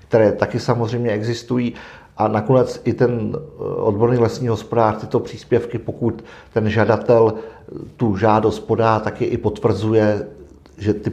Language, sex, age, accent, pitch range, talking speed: Czech, male, 50-69, native, 110-125 Hz, 130 wpm